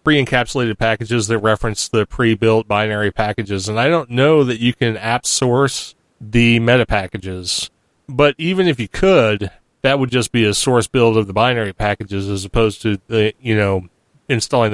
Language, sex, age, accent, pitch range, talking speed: English, male, 30-49, American, 105-120 Hz, 175 wpm